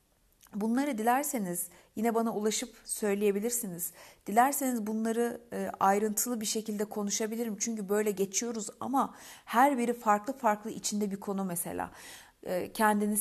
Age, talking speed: 60-79, 115 wpm